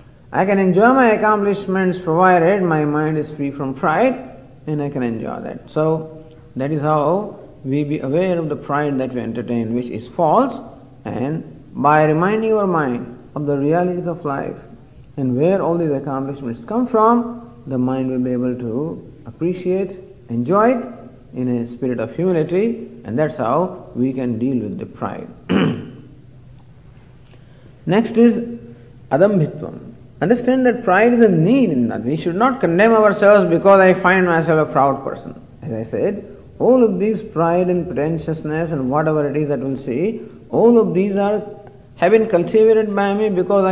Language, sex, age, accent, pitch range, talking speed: English, male, 50-69, Indian, 135-205 Hz, 165 wpm